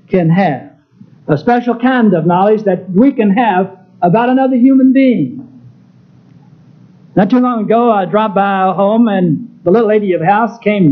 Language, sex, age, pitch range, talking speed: English, male, 50-69, 175-225 Hz, 170 wpm